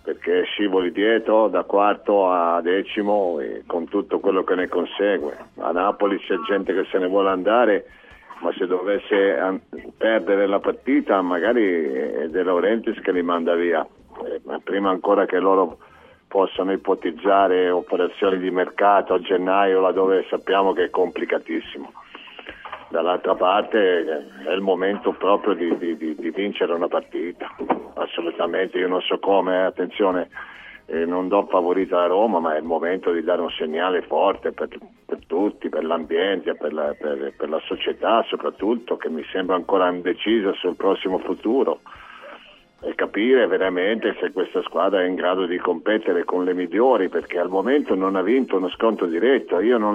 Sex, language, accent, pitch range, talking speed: male, Italian, native, 95-135 Hz, 160 wpm